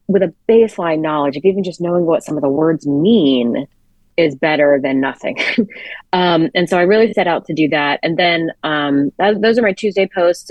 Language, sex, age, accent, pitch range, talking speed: English, female, 30-49, American, 150-205 Hz, 210 wpm